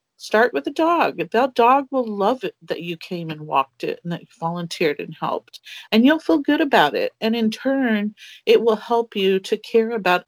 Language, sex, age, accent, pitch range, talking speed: English, female, 40-59, American, 185-230 Hz, 215 wpm